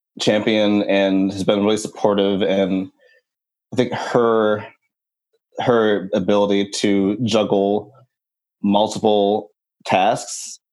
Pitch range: 100-110 Hz